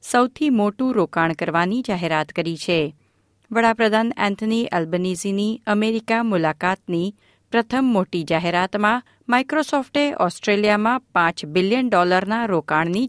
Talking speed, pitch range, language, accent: 115 wpm, 165-230 Hz, Gujarati, native